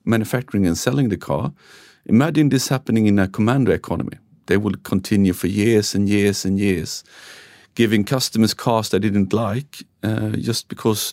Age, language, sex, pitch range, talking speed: 40-59, English, male, 95-115 Hz, 160 wpm